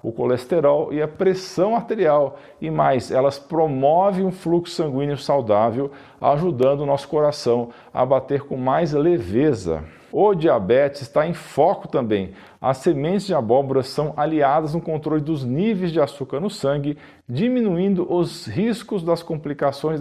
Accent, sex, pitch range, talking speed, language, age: Brazilian, male, 135-175 Hz, 145 wpm, Portuguese, 50-69